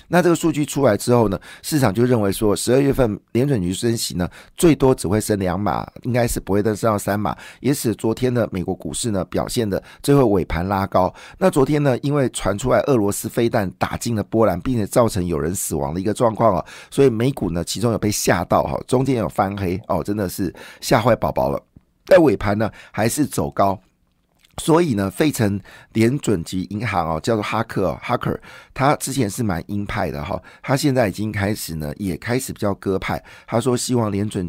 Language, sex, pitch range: Chinese, male, 95-125 Hz